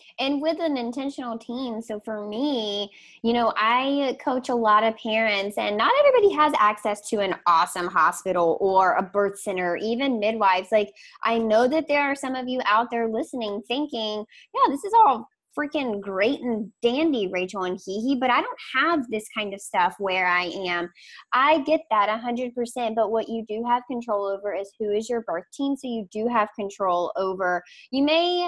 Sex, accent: female, American